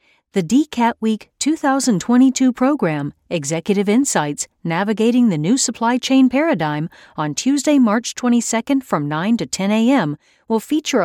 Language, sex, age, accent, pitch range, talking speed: English, female, 40-59, American, 165-255 Hz, 130 wpm